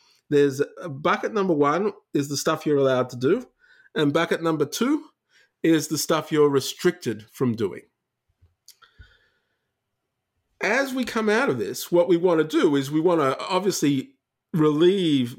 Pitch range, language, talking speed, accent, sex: 125-180 Hz, English, 155 wpm, Australian, male